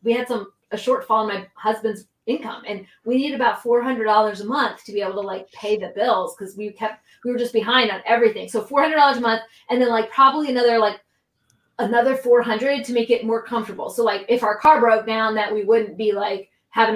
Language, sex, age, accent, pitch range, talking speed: English, female, 20-39, American, 215-275 Hz, 225 wpm